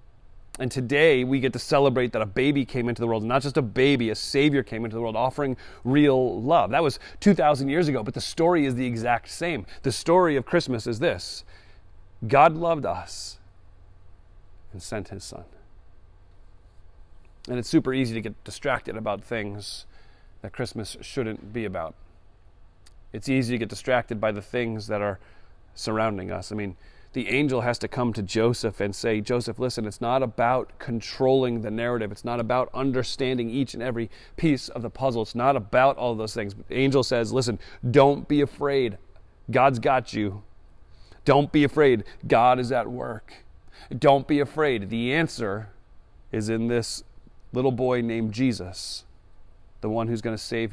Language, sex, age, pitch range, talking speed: English, male, 30-49, 95-130 Hz, 175 wpm